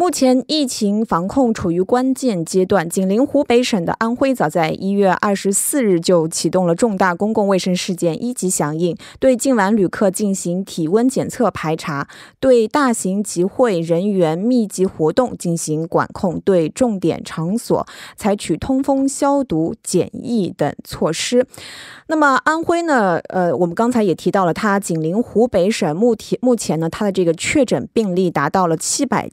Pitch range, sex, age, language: 170-240 Hz, female, 20-39, Korean